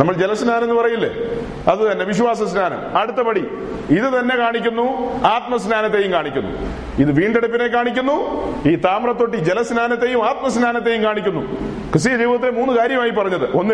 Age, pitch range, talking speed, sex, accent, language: 40-59, 200-240 Hz, 125 wpm, male, native, Malayalam